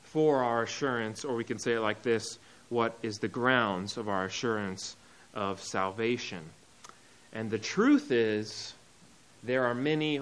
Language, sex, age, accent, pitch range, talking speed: English, male, 30-49, American, 115-140 Hz, 155 wpm